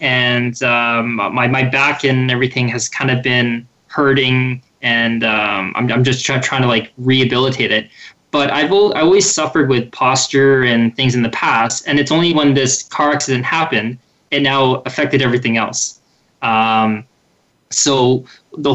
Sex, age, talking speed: male, 20-39, 165 wpm